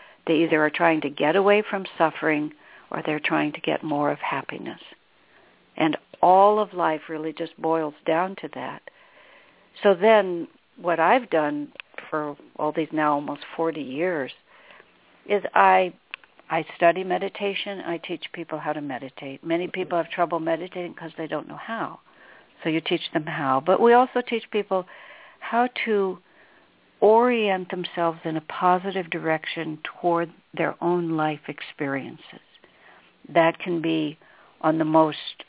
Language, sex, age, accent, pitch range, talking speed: English, female, 60-79, American, 155-180 Hz, 150 wpm